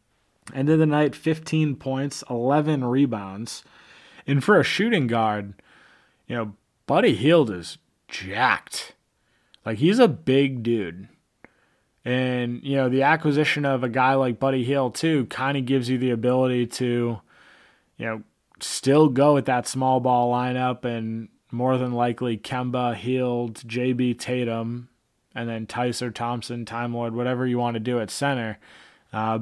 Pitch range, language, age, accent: 120-140 Hz, English, 20-39, American